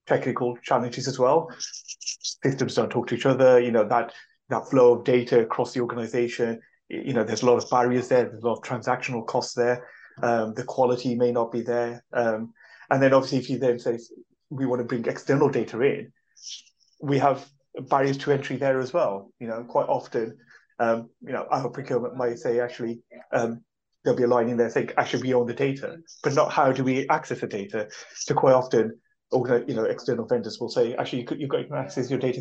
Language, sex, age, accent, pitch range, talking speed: English, male, 30-49, British, 120-135 Hz, 215 wpm